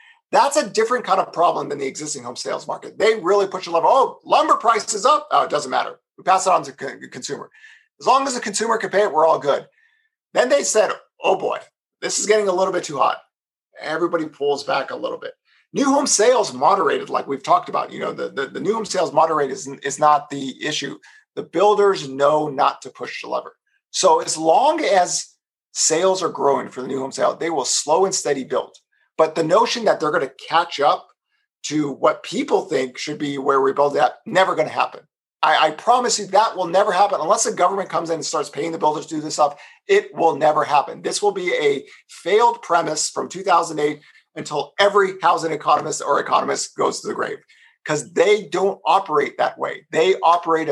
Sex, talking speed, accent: male, 220 wpm, American